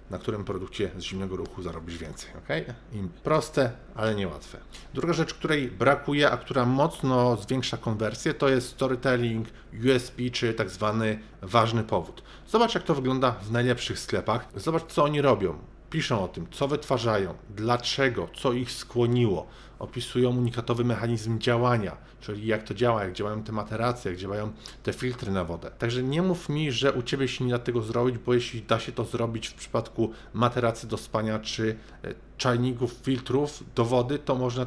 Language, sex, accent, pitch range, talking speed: Polish, male, native, 110-130 Hz, 170 wpm